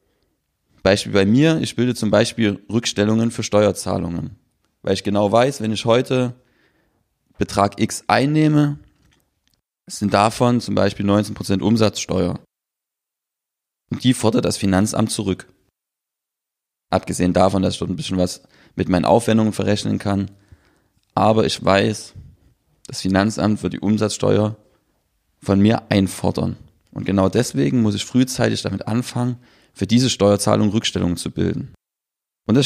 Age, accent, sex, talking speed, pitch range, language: 30-49, German, male, 130 wpm, 95-120 Hz, German